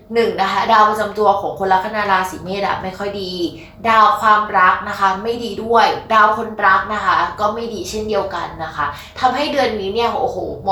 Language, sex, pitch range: Thai, female, 175-225 Hz